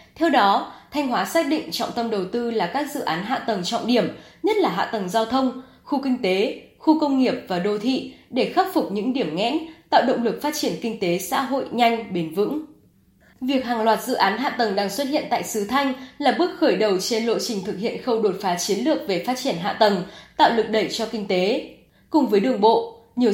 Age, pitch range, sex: 10-29, 210-275 Hz, female